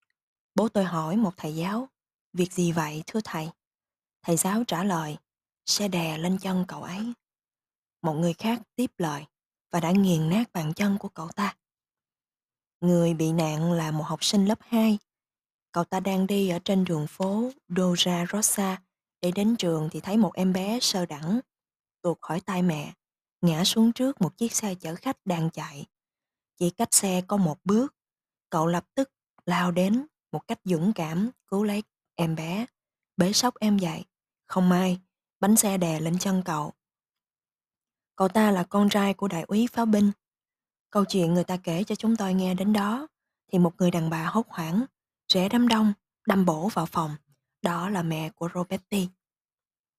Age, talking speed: 20-39, 180 wpm